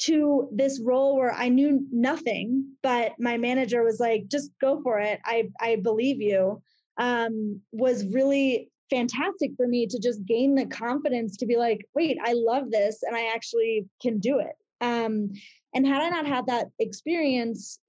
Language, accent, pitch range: English, American, 220-250 Hz